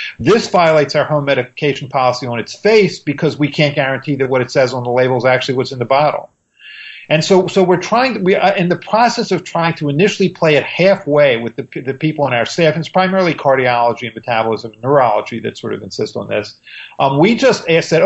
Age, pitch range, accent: 50-69, 135-185 Hz, American